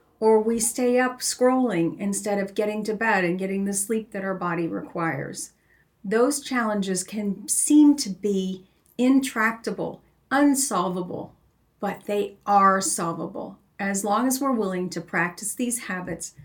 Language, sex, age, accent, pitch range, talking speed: English, female, 40-59, American, 185-225 Hz, 140 wpm